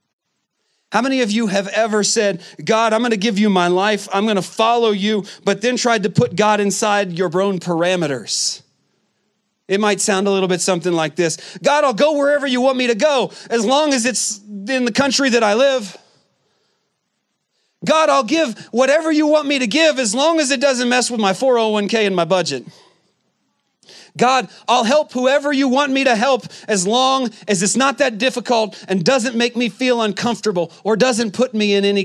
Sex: male